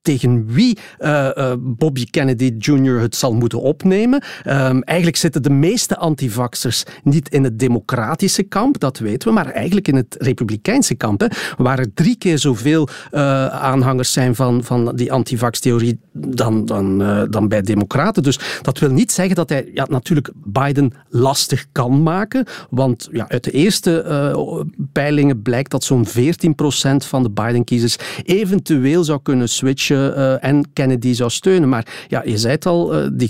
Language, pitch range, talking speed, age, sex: Dutch, 125-160 Hz, 165 wpm, 40-59, male